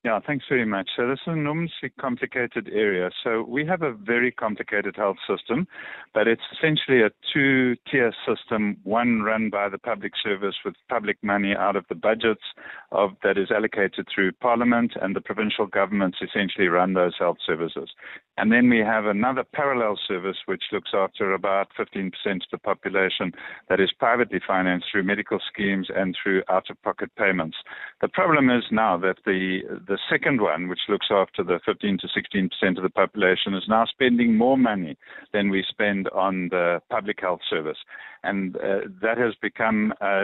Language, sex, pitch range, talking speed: English, male, 95-115 Hz, 185 wpm